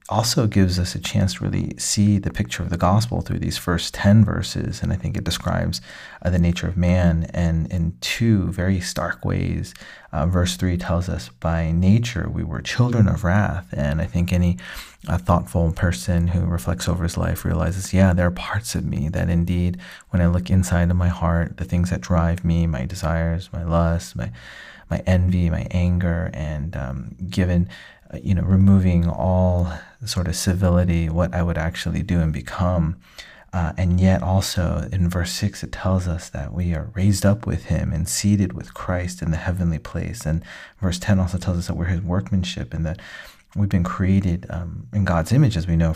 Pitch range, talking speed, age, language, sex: 85-95 Hz, 200 wpm, 30-49, English, male